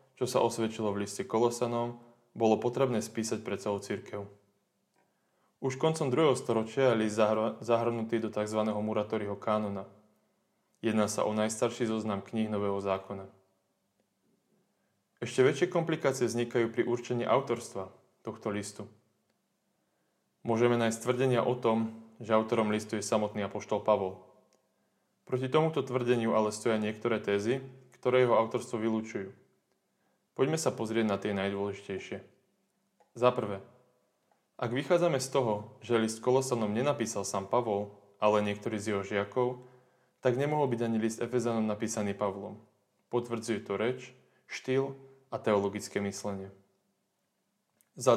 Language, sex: Slovak, male